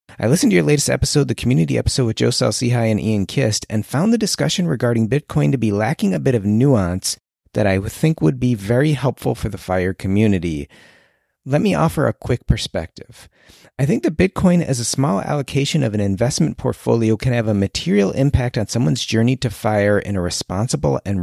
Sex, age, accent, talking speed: male, 30-49, American, 200 wpm